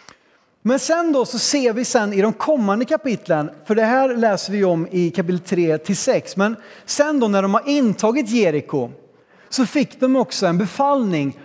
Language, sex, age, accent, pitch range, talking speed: Swedish, male, 30-49, native, 175-235 Hz, 185 wpm